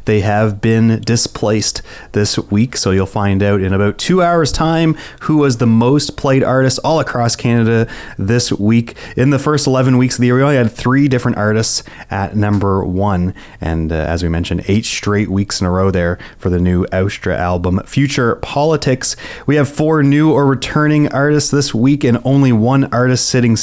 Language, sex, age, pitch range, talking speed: English, male, 30-49, 100-130 Hz, 195 wpm